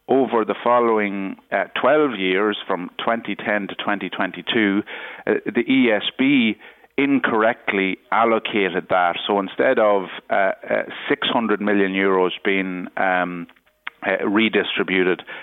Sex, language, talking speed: male, English, 110 wpm